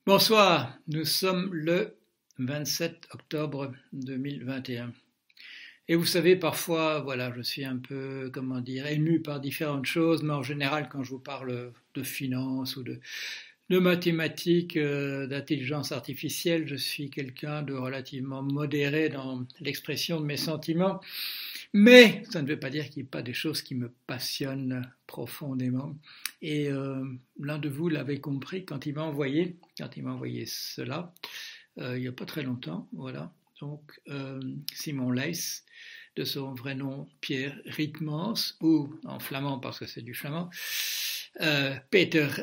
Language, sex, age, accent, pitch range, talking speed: French, male, 60-79, French, 135-160 Hz, 155 wpm